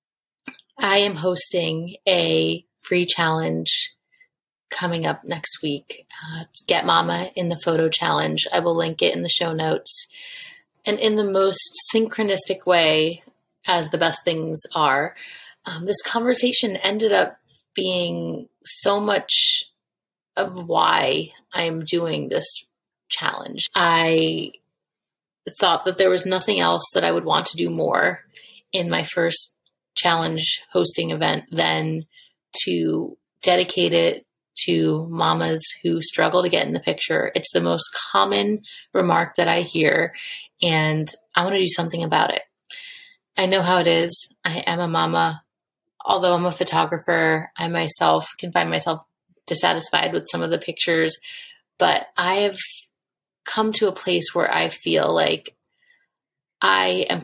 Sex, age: female, 30-49